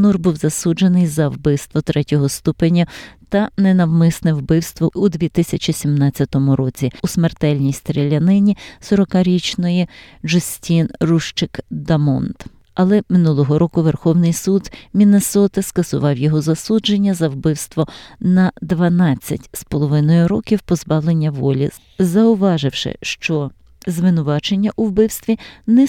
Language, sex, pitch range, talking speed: Ukrainian, female, 155-195 Hz, 100 wpm